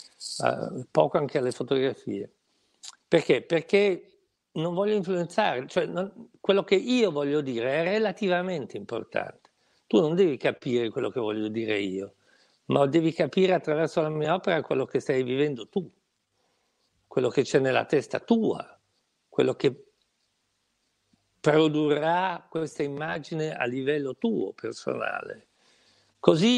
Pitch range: 145-195 Hz